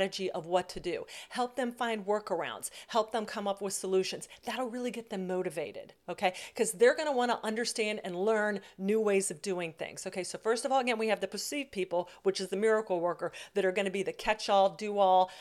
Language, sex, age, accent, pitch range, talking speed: English, female, 40-59, American, 185-225 Hz, 225 wpm